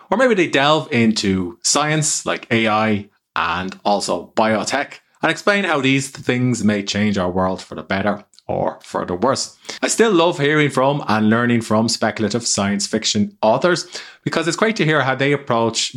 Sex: male